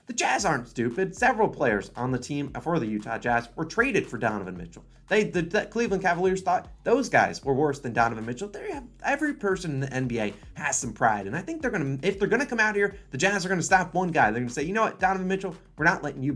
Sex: male